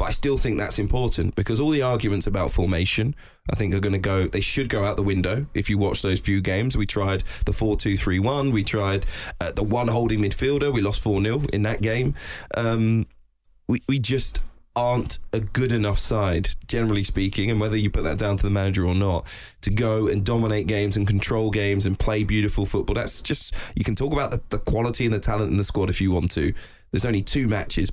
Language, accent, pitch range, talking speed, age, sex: English, British, 100-110 Hz, 225 wpm, 20-39, male